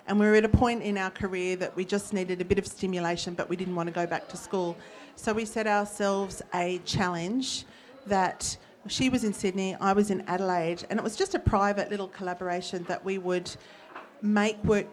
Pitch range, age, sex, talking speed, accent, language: 180-220 Hz, 40-59, female, 215 wpm, Australian, English